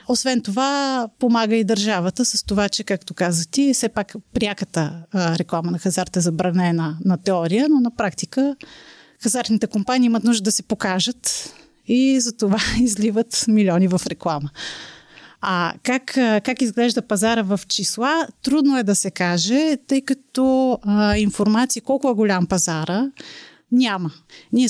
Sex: female